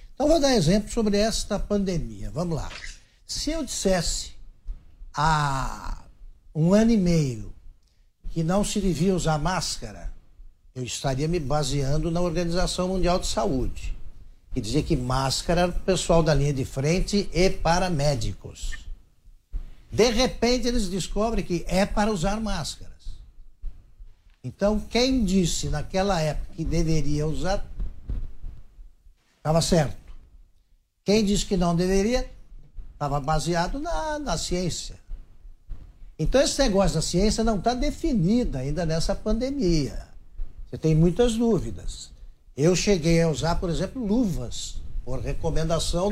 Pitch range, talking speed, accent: 130-200 Hz, 130 wpm, Brazilian